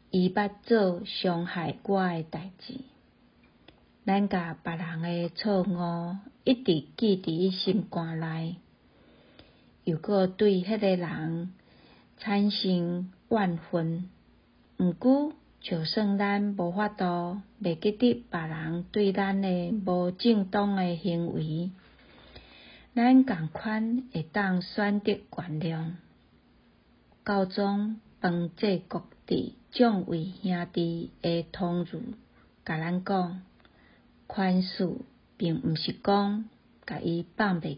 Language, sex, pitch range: Chinese, female, 175-210 Hz